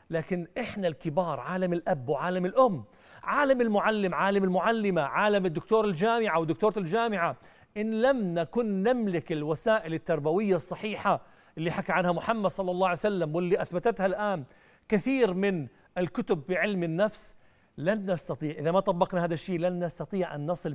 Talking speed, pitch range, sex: 145 wpm, 160-205 Hz, male